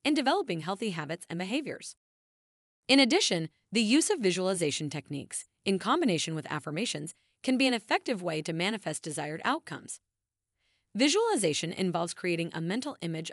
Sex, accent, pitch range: female, American, 160-235 Hz